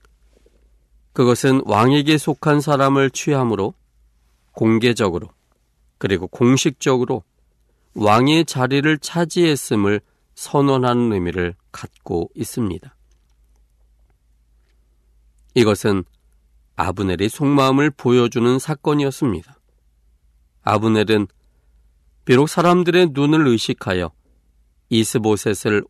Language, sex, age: Korean, male, 40-59